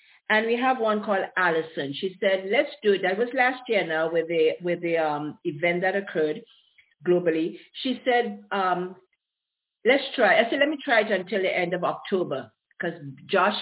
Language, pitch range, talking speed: English, 180-245 Hz, 190 wpm